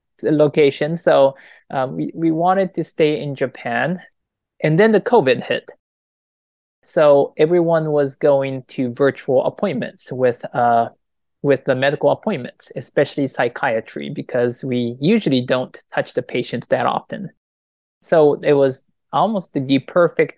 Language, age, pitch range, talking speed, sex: English, 20-39, 125-155 Hz, 135 wpm, male